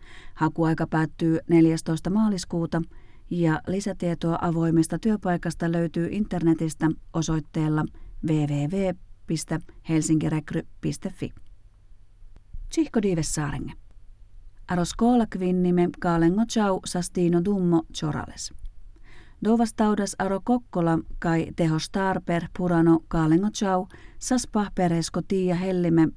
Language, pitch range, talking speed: Finnish, 155-180 Hz, 75 wpm